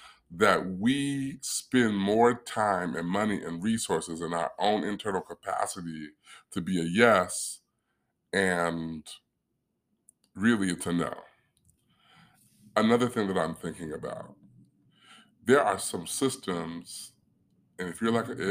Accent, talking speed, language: American, 115 wpm, English